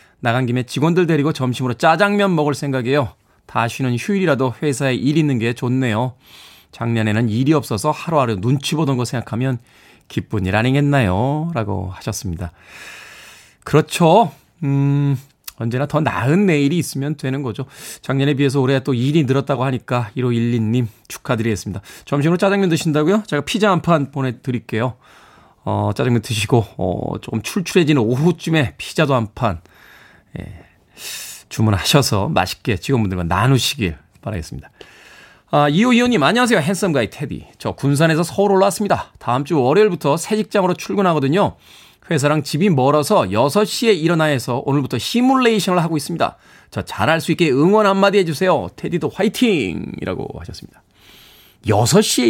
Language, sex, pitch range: Korean, male, 120-175 Hz